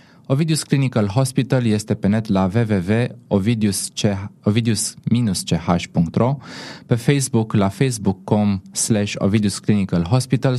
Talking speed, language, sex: 80 wpm, Romanian, male